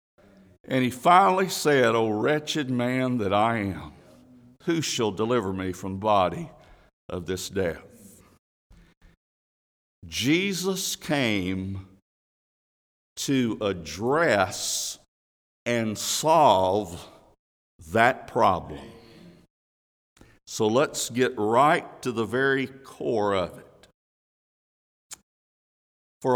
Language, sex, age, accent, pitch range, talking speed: English, male, 60-79, American, 95-135 Hz, 90 wpm